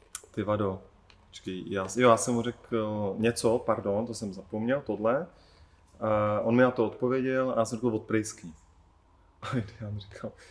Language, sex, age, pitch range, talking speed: Czech, male, 30-49, 105-130 Hz, 155 wpm